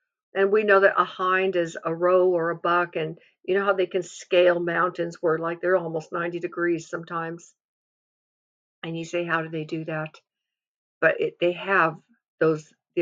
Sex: female